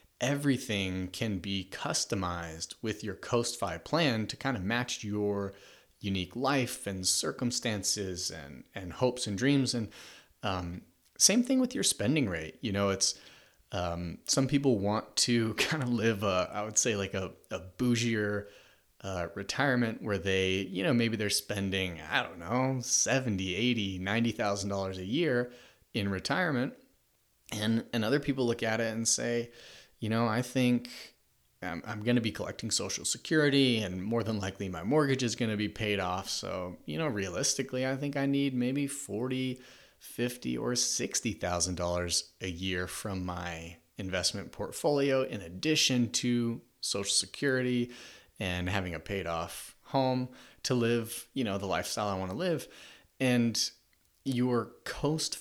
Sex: male